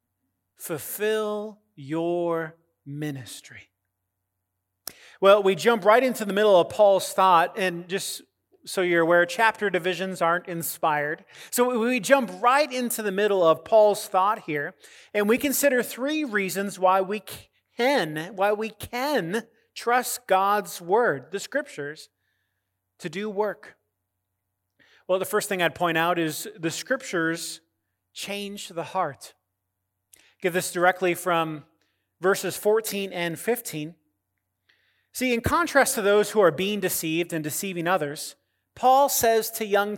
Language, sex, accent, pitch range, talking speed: English, male, American, 145-215 Hz, 130 wpm